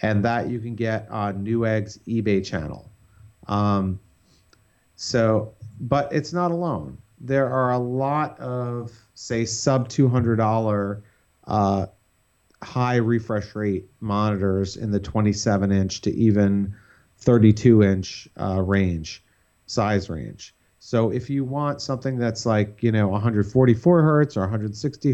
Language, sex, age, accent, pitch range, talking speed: English, male, 40-59, American, 100-120 Hz, 115 wpm